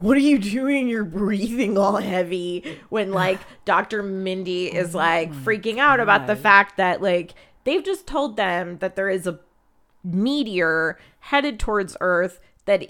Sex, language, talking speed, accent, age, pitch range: female, English, 160 wpm, American, 20-39, 170-215 Hz